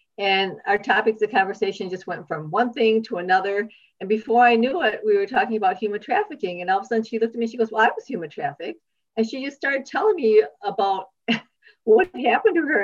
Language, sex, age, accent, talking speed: English, female, 50-69, American, 235 wpm